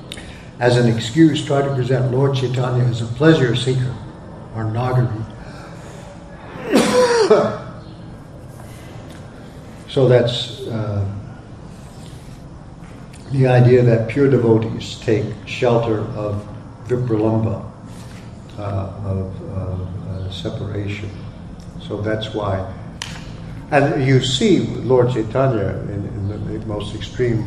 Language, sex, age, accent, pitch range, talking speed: English, male, 60-79, American, 100-125 Hz, 90 wpm